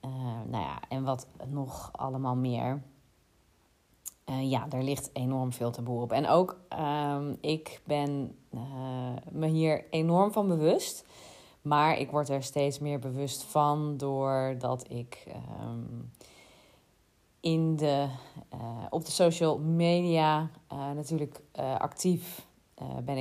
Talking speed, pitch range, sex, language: 130 wpm, 125-150 Hz, female, Dutch